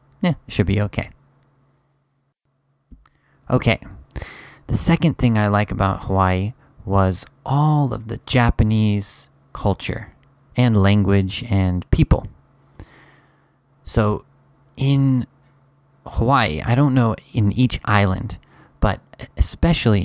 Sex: male